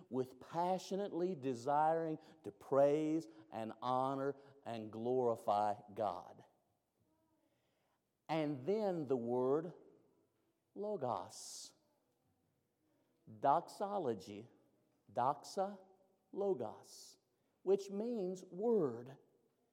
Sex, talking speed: male, 65 wpm